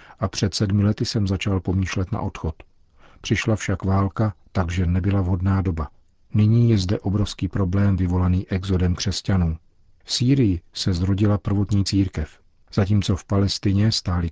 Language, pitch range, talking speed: Czech, 90-100 Hz, 145 wpm